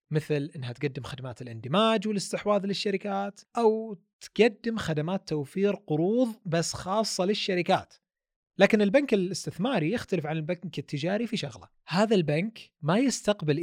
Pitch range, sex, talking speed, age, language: 140-200 Hz, male, 125 wpm, 30-49, Arabic